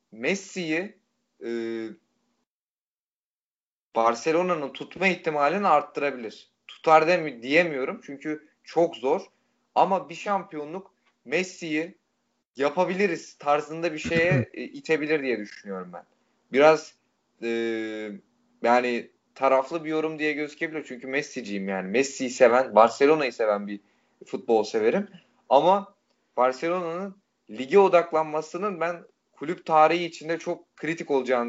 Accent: native